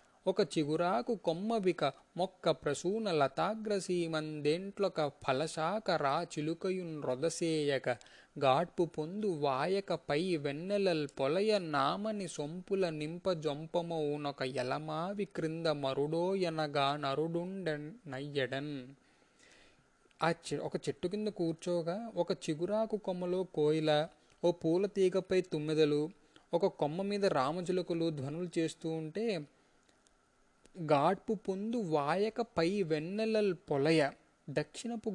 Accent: native